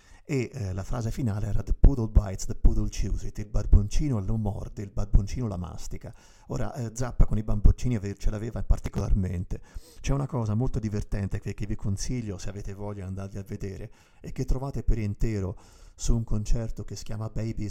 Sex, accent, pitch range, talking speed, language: male, native, 100-120 Hz, 195 wpm, Italian